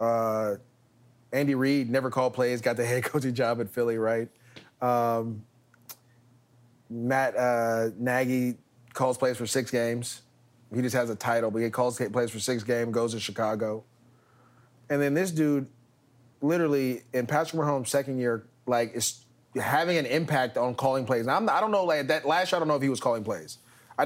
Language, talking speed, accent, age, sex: English, 175 wpm, American, 30-49, male